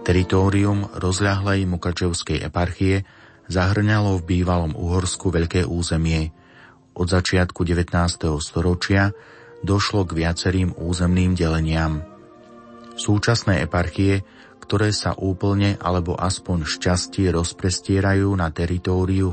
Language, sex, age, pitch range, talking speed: Slovak, male, 30-49, 85-100 Hz, 95 wpm